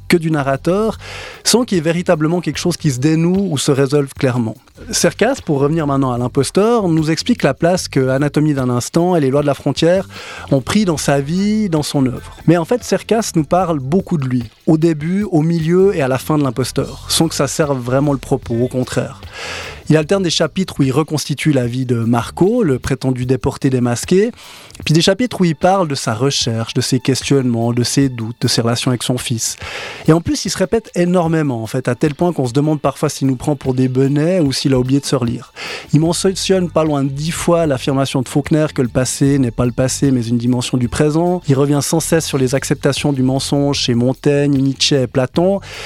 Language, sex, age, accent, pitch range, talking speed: French, male, 20-39, French, 130-170 Hz, 225 wpm